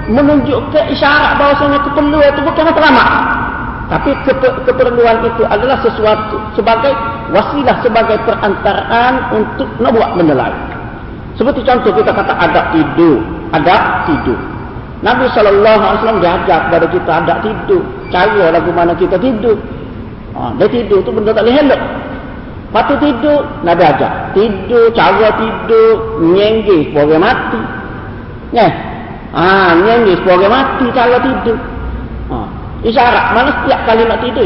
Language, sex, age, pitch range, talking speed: Malay, male, 50-69, 220-280 Hz, 125 wpm